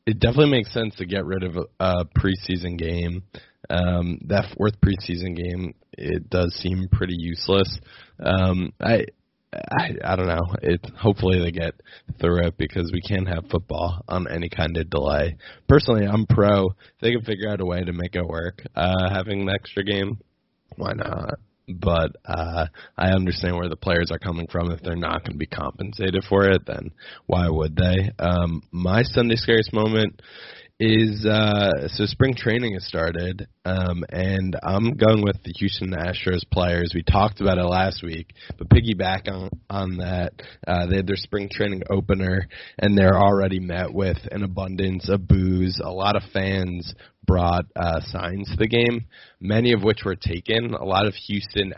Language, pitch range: English, 85-100 Hz